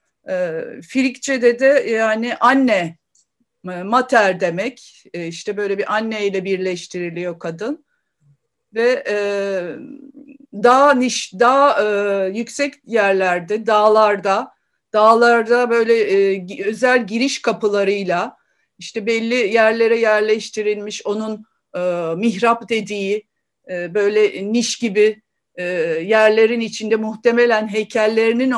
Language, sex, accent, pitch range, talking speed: Turkish, female, native, 195-240 Hz, 95 wpm